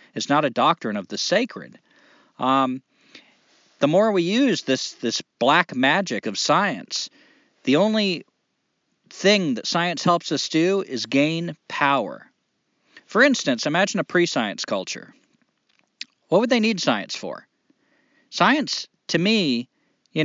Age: 40-59